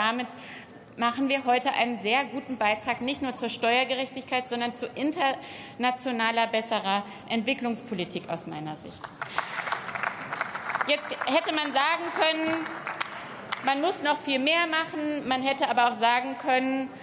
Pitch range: 220-265 Hz